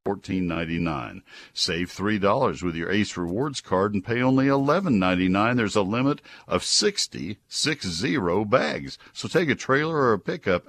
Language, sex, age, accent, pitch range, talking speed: English, male, 60-79, American, 90-125 Hz, 170 wpm